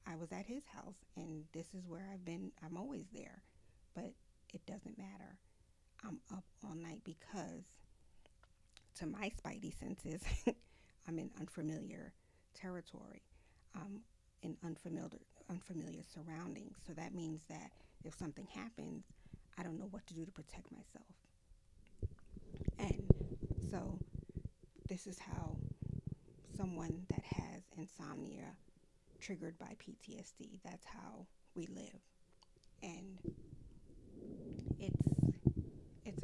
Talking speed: 120 wpm